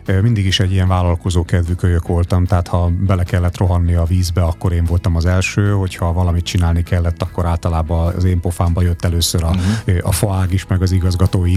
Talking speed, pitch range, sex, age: 190 wpm, 85-100 Hz, male, 30-49